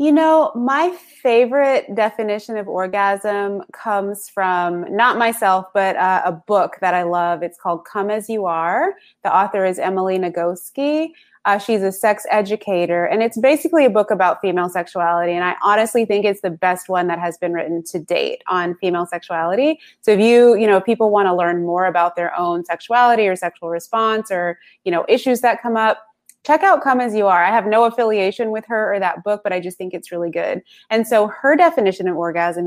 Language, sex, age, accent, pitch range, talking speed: English, female, 20-39, American, 175-225 Hz, 205 wpm